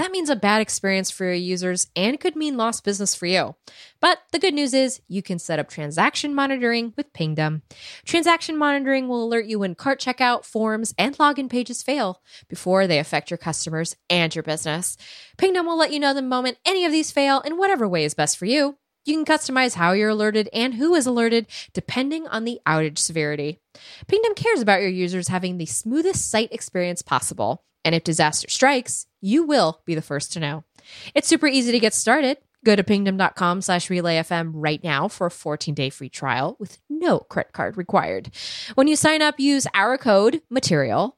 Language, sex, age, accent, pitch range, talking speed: English, female, 20-39, American, 170-275 Hz, 195 wpm